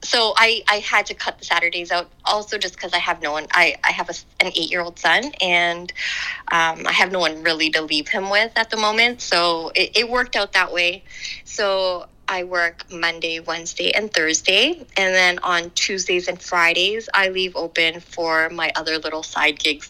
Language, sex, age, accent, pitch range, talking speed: English, female, 20-39, American, 165-190 Hz, 195 wpm